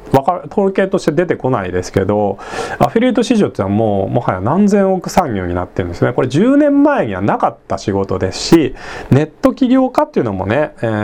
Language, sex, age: Japanese, male, 40-59